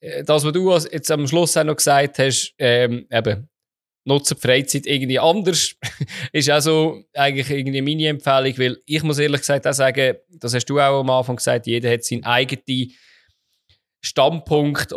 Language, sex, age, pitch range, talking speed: German, male, 20-39, 120-145 Hz, 165 wpm